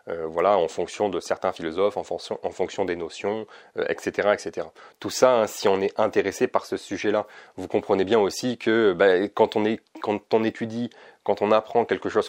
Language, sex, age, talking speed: French, male, 30-49, 210 wpm